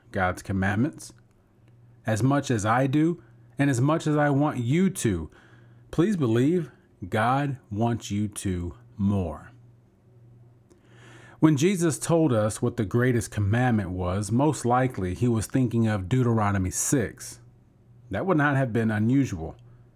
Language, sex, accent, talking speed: English, male, American, 135 wpm